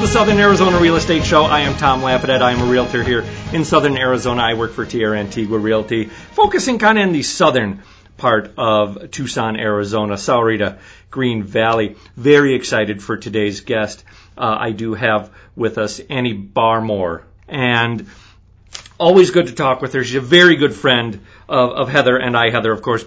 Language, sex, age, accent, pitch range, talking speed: English, male, 40-59, American, 105-135 Hz, 180 wpm